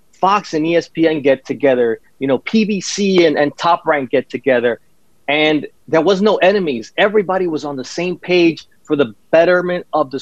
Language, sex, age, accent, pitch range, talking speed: English, male, 30-49, American, 150-190 Hz, 175 wpm